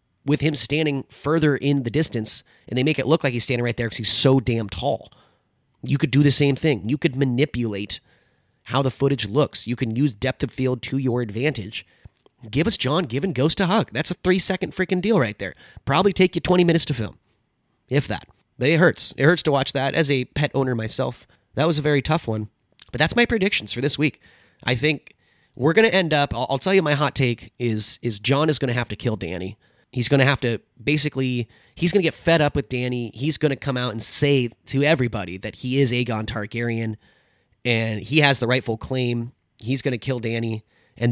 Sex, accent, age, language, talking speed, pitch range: male, American, 30-49, English, 230 wpm, 115-145 Hz